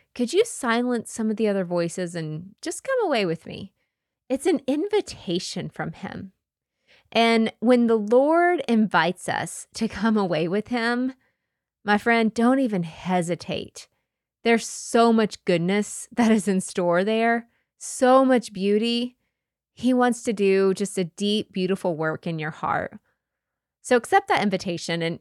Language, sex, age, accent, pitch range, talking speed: English, female, 20-39, American, 180-245 Hz, 150 wpm